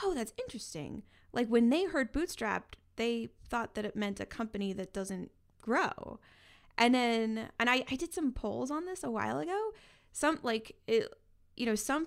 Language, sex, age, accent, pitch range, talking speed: English, female, 10-29, American, 205-265 Hz, 180 wpm